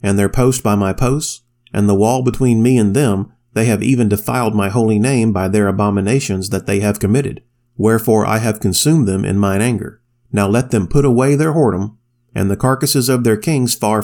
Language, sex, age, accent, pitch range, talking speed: English, male, 40-59, American, 100-125 Hz, 210 wpm